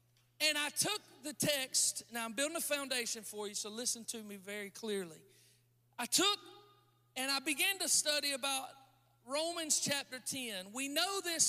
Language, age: English, 40-59